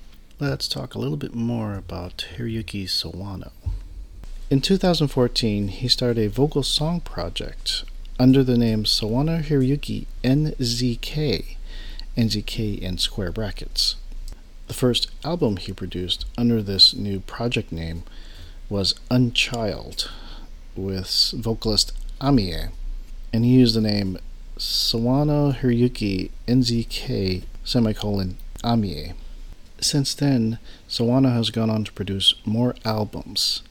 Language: English